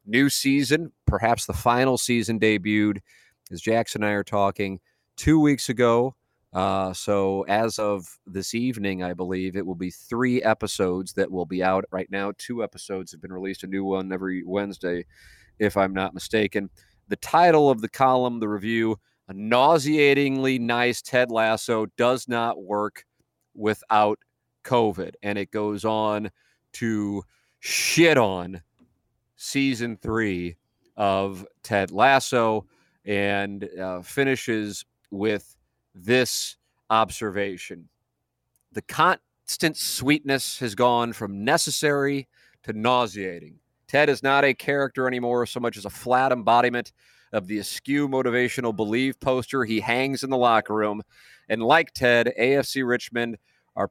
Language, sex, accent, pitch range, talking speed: English, male, American, 100-125 Hz, 135 wpm